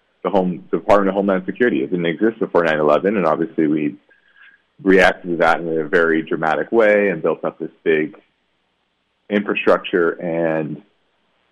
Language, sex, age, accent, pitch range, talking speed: English, male, 30-49, American, 85-100 Hz, 155 wpm